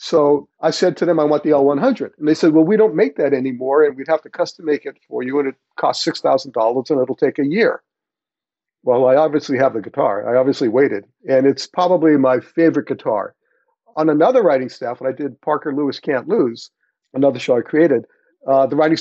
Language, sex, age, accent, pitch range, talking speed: English, male, 50-69, American, 125-155 Hz, 220 wpm